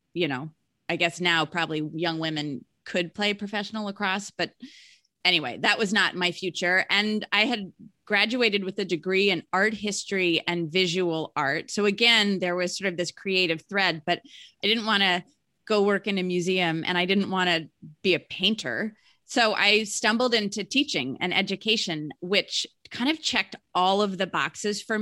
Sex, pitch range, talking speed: female, 170-210 Hz, 180 wpm